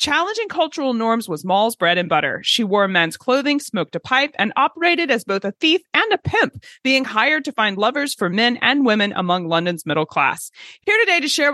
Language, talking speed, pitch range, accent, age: English, 215 wpm, 190-285 Hz, American, 30-49